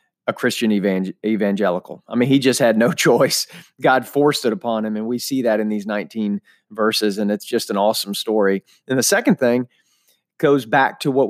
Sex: male